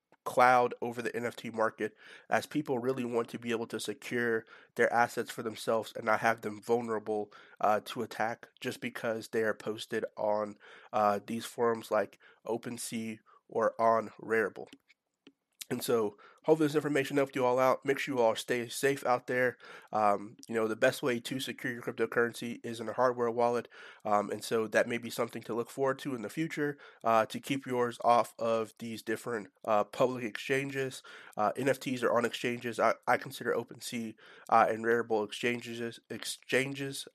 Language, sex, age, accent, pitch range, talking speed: English, male, 30-49, American, 110-125 Hz, 180 wpm